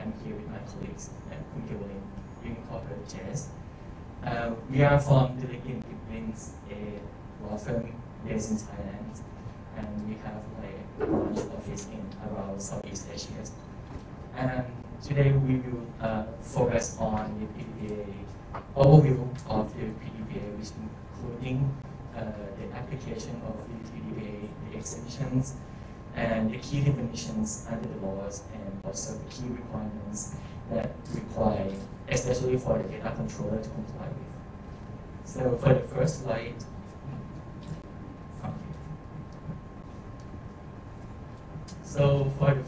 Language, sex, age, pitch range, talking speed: English, male, 20-39, 110-130 Hz, 120 wpm